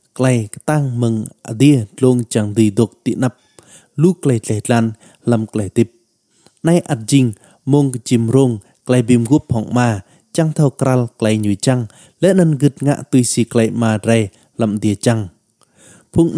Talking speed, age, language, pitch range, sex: 60 wpm, 20-39, Vietnamese, 115-150 Hz, male